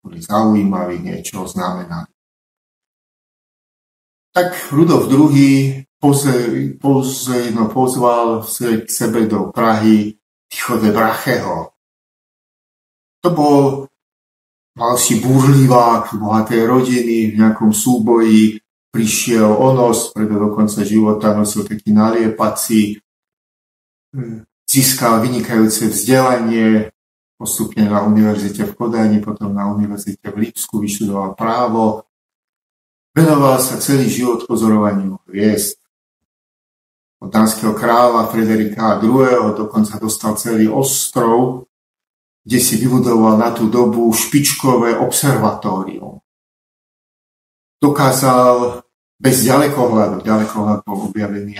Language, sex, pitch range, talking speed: Slovak, male, 105-125 Hz, 90 wpm